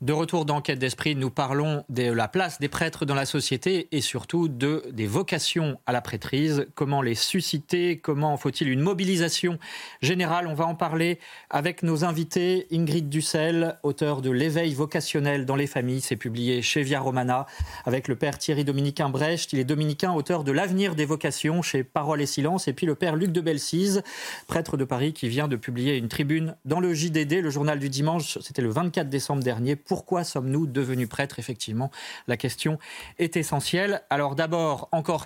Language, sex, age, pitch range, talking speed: French, male, 40-59, 130-165 Hz, 195 wpm